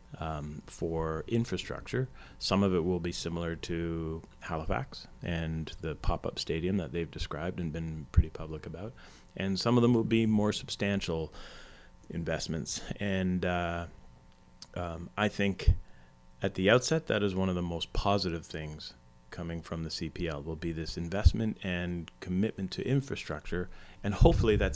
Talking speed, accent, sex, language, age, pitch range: 155 wpm, American, male, English, 30-49, 80-100 Hz